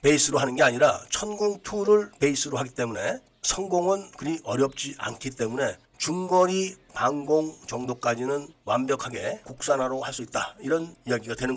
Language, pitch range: Korean, 130-170 Hz